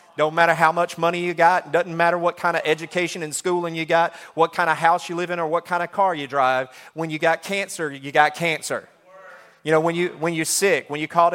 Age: 30-49